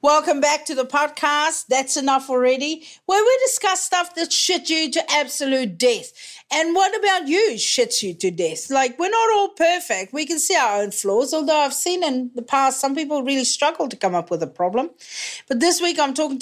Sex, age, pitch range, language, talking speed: female, 50-69, 235-315 Hz, English, 210 wpm